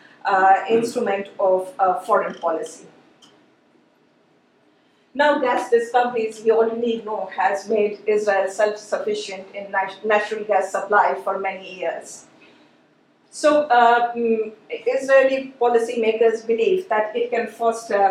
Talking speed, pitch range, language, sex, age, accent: 110 wpm, 195-240 Hz, English, female, 50-69, Indian